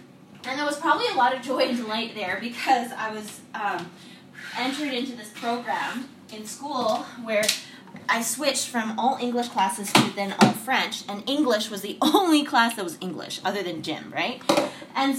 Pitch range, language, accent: 220-275 Hz, English, American